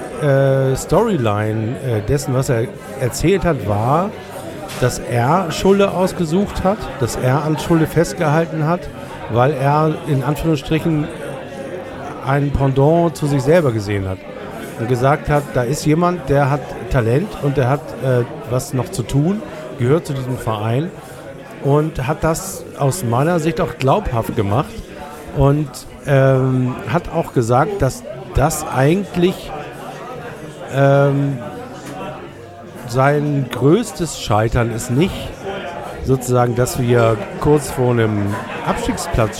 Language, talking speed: German, 120 wpm